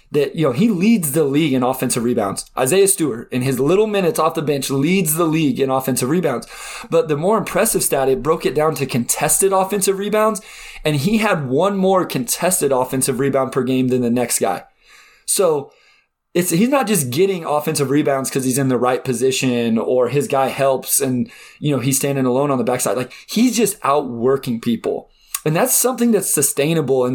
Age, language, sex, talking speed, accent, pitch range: 20-39, English, male, 200 wpm, American, 130-185 Hz